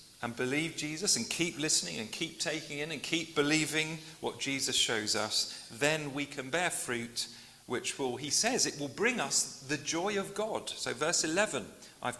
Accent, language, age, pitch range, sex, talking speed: British, English, 40-59, 125-175 Hz, male, 185 wpm